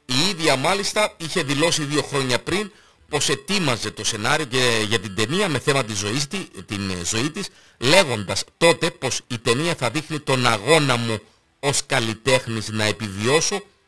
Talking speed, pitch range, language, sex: 155 wpm, 115-155 Hz, Greek, male